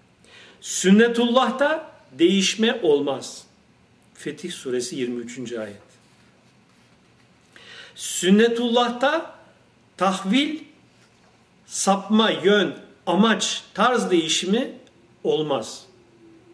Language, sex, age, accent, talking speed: Turkish, male, 50-69, native, 55 wpm